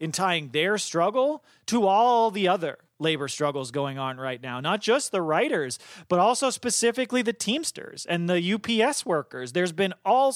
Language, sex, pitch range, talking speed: English, male, 155-215 Hz, 175 wpm